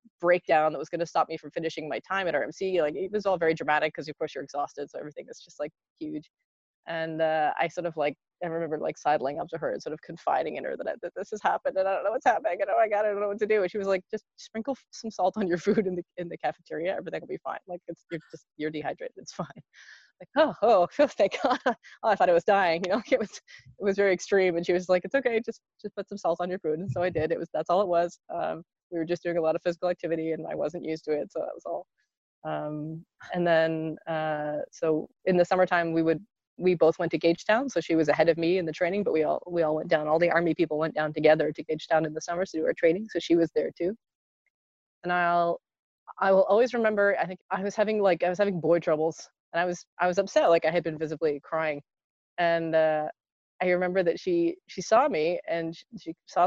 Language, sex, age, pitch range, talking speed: English, female, 20-39, 160-195 Hz, 270 wpm